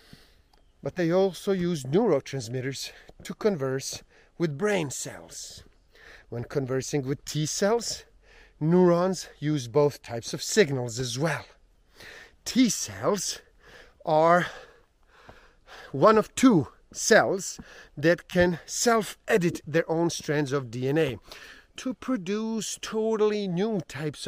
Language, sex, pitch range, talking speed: English, male, 135-205 Hz, 105 wpm